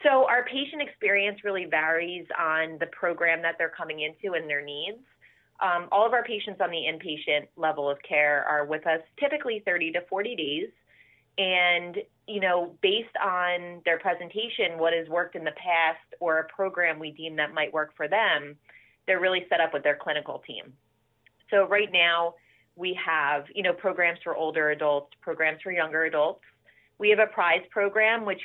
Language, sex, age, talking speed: English, female, 30-49, 185 wpm